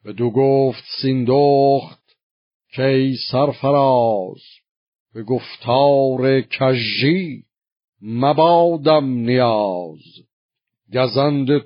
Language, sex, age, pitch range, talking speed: Persian, male, 50-69, 115-145 Hz, 60 wpm